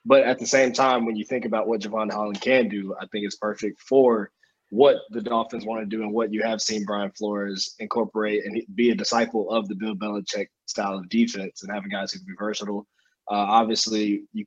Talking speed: 230 wpm